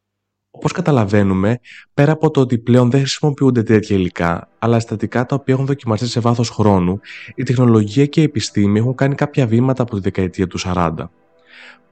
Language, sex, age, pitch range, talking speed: Greek, male, 20-39, 100-130 Hz, 170 wpm